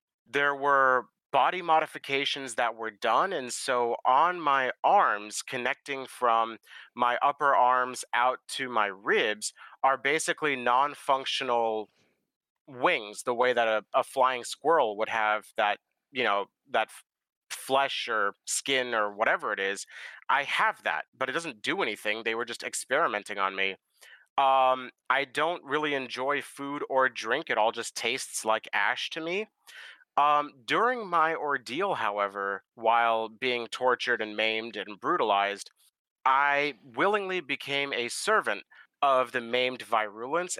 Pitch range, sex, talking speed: 115-145 Hz, male, 145 wpm